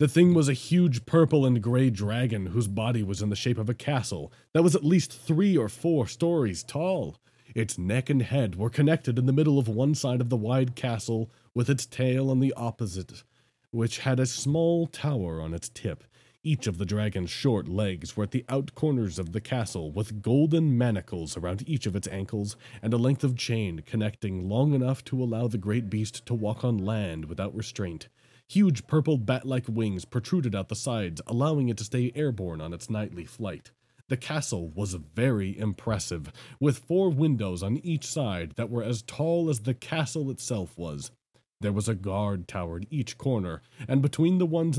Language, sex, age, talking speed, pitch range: English, male, 30-49, 195 wpm, 105-135 Hz